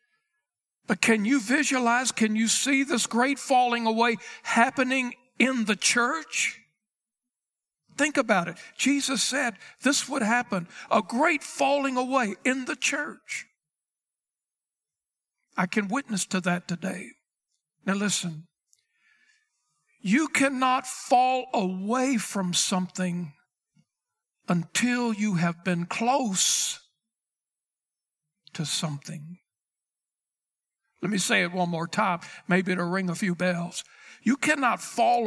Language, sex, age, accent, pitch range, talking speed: English, male, 60-79, American, 180-250 Hz, 110 wpm